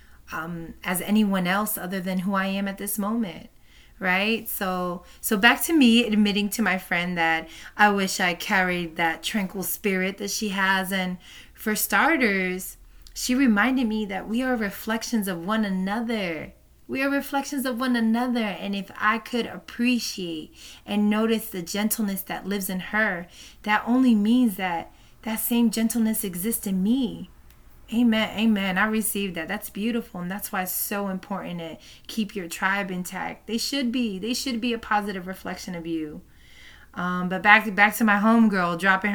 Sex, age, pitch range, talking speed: female, 20-39, 185-230 Hz, 175 wpm